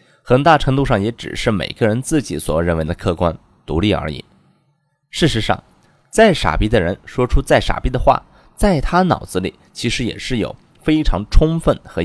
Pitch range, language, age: 95-150 Hz, Chinese, 20-39